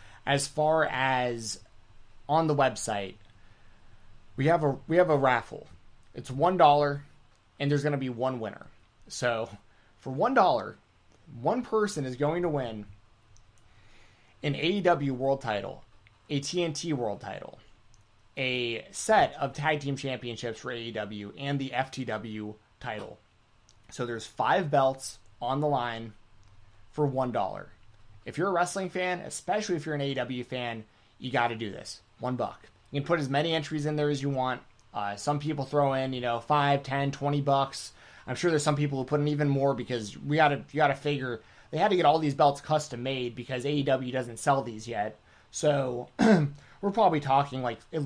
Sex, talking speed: male, 170 wpm